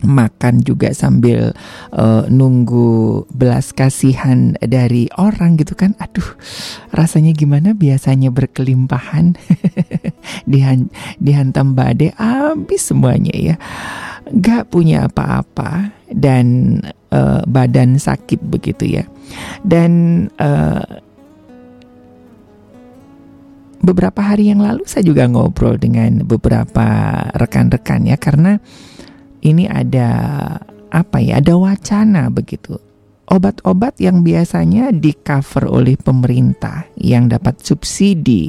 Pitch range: 125-180 Hz